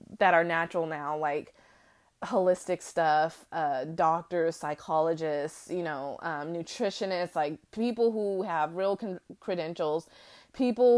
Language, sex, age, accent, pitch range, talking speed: English, female, 30-49, American, 175-230 Hz, 115 wpm